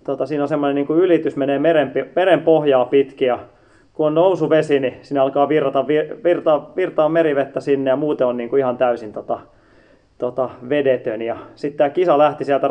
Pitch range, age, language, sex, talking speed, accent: 130-150 Hz, 30-49, Finnish, male, 175 wpm, native